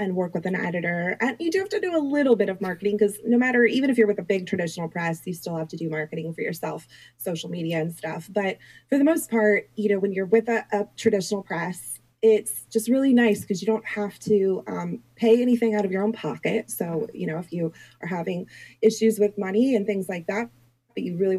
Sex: female